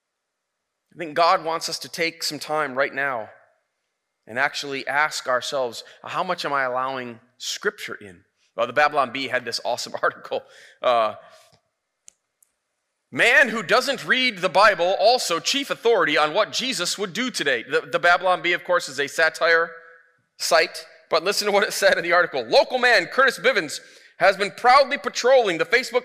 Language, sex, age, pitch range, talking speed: English, male, 30-49, 165-275 Hz, 175 wpm